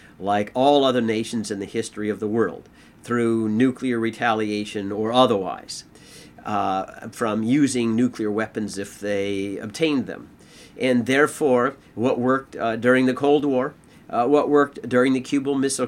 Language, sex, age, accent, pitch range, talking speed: English, male, 50-69, American, 110-135 Hz, 150 wpm